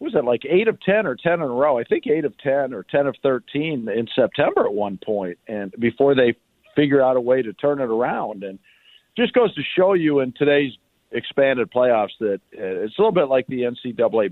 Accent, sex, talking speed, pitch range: American, male, 230 wpm, 105-155 Hz